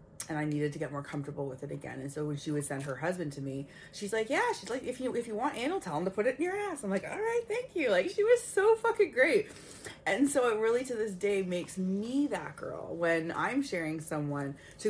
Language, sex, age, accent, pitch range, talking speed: English, female, 20-39, American, 160-210 Hz, 270 wpm